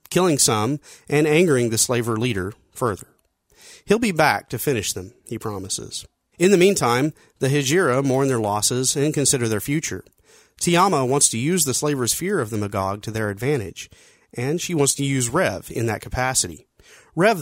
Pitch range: 115-150 Hz